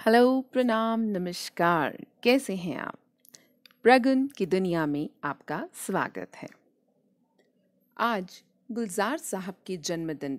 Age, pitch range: 40-59, 180-245 Hz